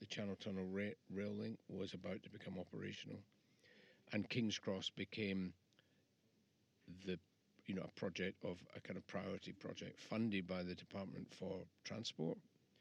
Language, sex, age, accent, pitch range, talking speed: English, male, 50-69, British, 95-115 Hz, 145 wpm